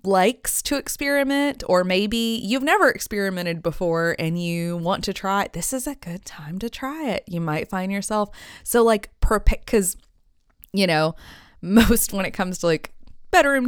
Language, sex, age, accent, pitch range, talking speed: English, female, 20-39, American, 175-275 Hz, 180 wpm